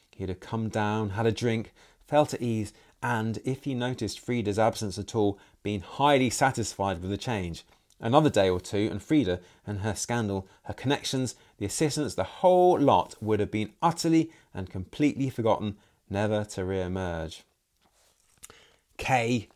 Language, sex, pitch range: English, male, 95-135 Hz